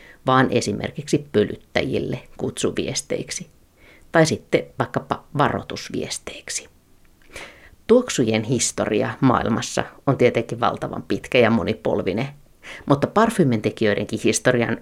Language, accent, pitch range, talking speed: Finnish, native, 110-140 Hz, 80 wpm